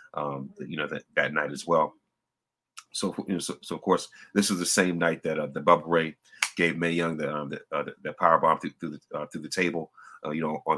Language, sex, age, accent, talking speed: English, male, 30-49, American, 255 wpm